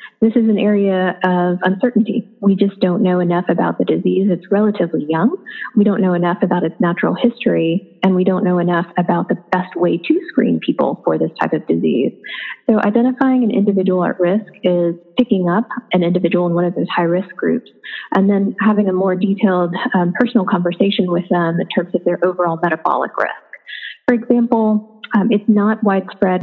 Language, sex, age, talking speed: English, female, 20-39, 190 wpm